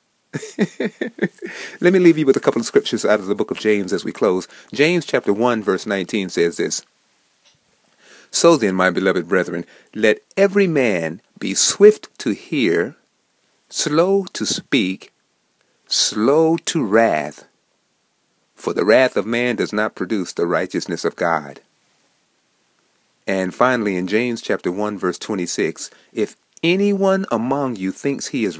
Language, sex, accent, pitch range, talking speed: English, male, American, 105-170 Hz, 145 wpm